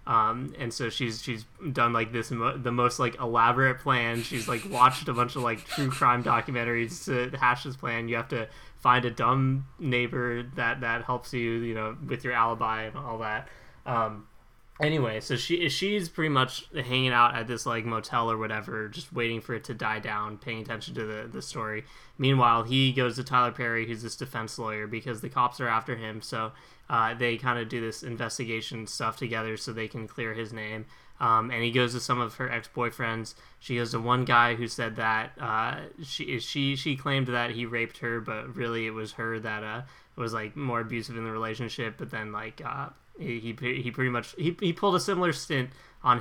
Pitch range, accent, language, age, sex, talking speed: 115-130 Hz, American, English, 10-29, male, 210 wpm